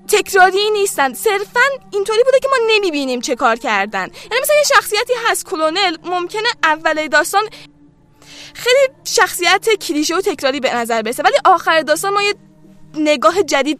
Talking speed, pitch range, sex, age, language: 150 wpm, 260-385 Hz, female, 10-29, Persian